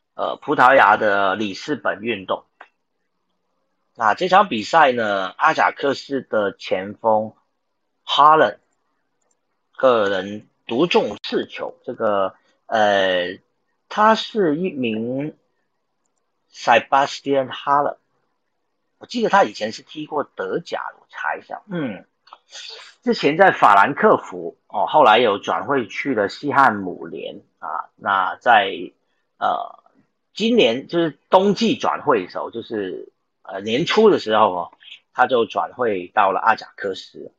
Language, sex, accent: Chinese, male, native